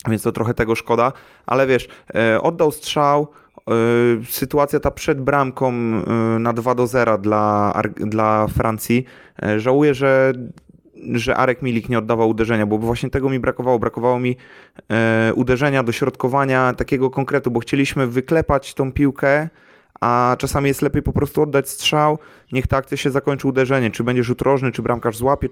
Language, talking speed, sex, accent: Polish, 155 wpm, male, native